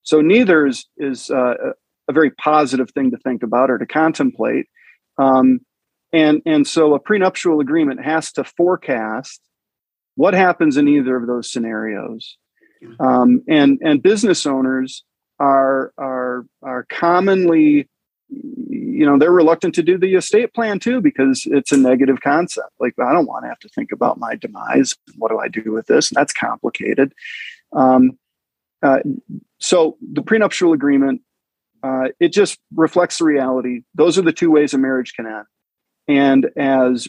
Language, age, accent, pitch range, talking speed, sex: English, 40-59, American, 130-180 Hz, 160 wpm, male